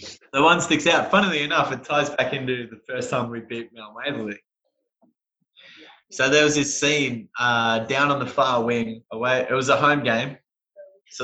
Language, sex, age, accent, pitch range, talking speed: English, male, 20-39, Australian, 115-145 Hz, 185 wpm